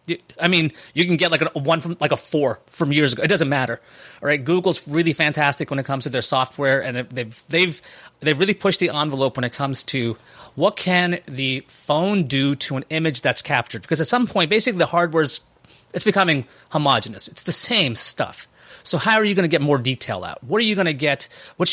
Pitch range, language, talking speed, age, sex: 140-185 Hz, English, 225 wpm, 30-49, male